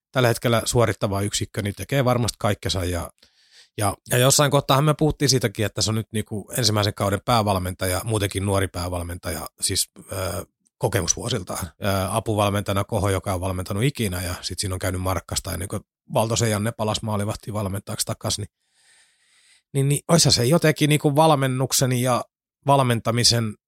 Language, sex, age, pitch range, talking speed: Finnish, male, 30-49, 100-120 Hz, 155 wpm